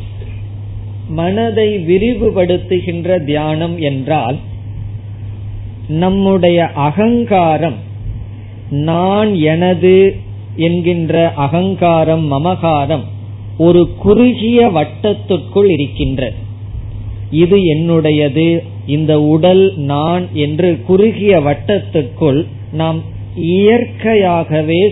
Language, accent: Tamil, native